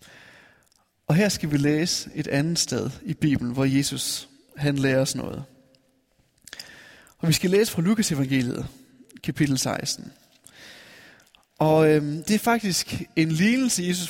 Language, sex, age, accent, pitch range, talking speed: Danish, male, 20-39, native, 145-190 Hz, 140 wpm